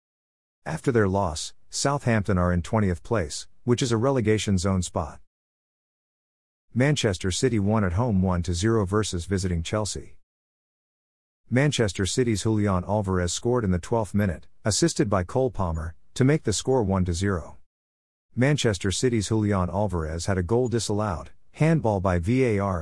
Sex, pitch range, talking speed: male, 90-115 Hz, 140 wpm